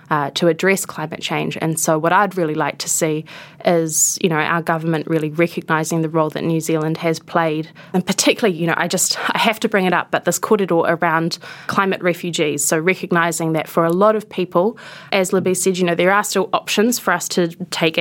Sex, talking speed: female, 220 wpm